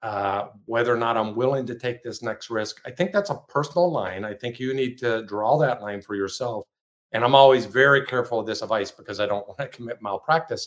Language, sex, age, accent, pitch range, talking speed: English, male, 50-69, American, 105-145 Hz, 235 wpm